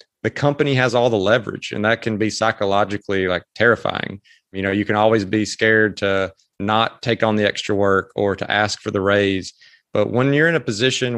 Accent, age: American, 30-49